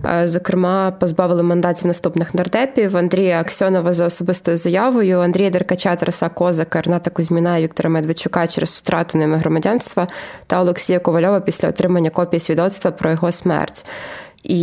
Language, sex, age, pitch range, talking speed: Ukrainian, female, 20-39, 170-185 Hz, 140 wpm